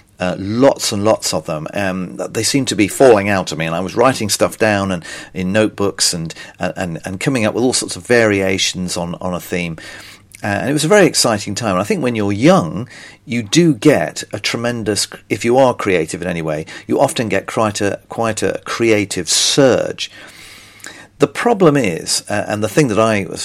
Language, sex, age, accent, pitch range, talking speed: English, male, 50-69, British, 95-120 Hz, 210 wpm